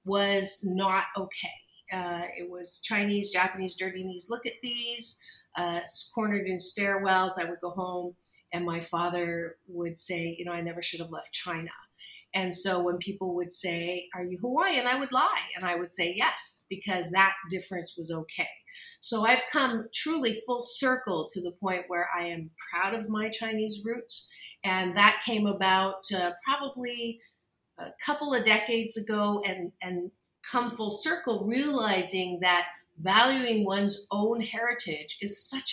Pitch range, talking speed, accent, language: 180-220 Hz, 165 wpm, American, English